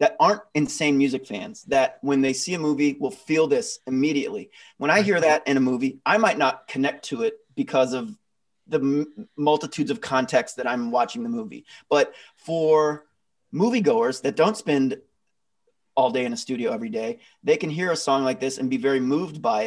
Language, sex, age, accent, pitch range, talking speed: English, male, 30-49, American, 135-220 Hz, 200 wpm